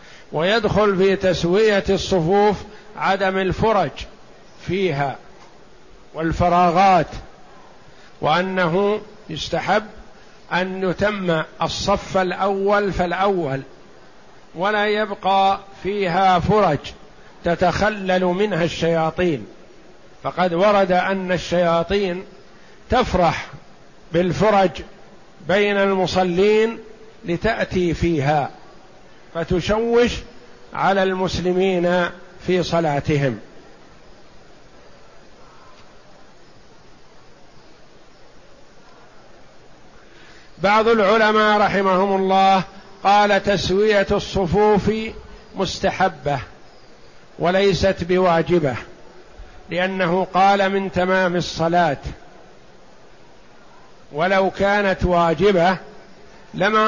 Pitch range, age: 175-200 Hz, 50-69